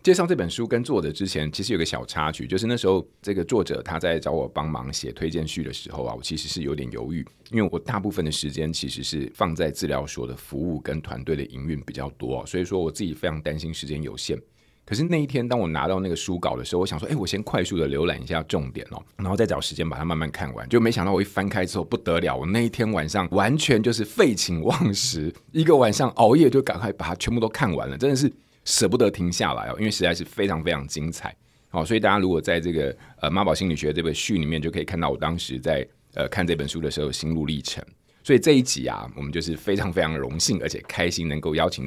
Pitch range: 75-100 Hz